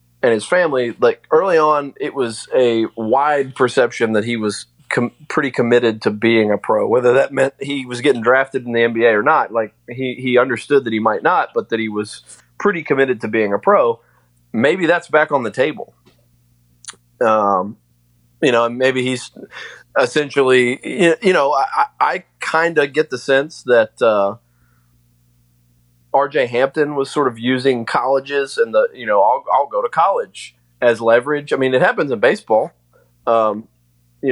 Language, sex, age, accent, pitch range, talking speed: English, male, 30-49, American, 110-145 Hz, 175 wpm